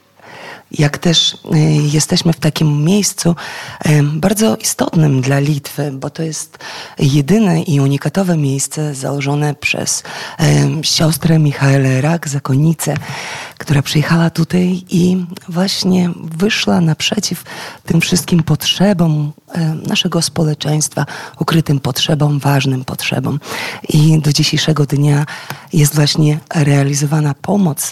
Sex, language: female, Polish